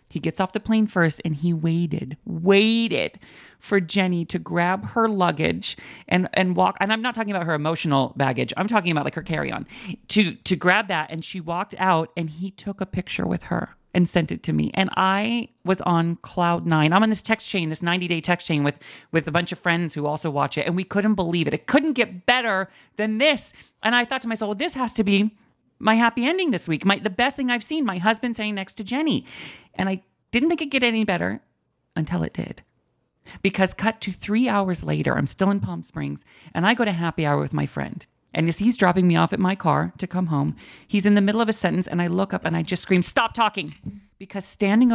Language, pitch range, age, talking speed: English, 170-215 Hz, 40-59, 240 wpm